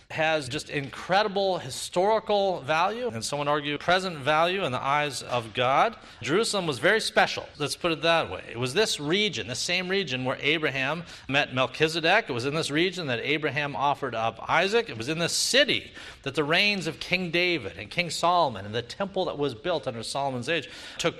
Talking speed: 195 wpm